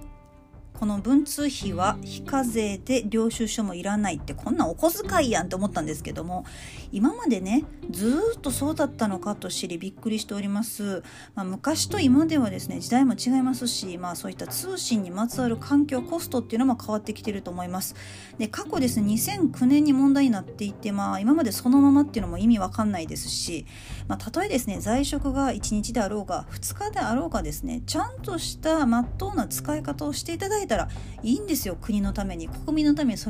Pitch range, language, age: 195-275 Hz, Japanese, 40-59